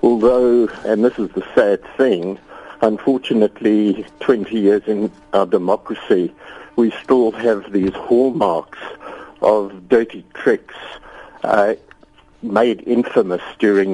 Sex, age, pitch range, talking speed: male, 60-79, 100-120 Hz, 110 wpm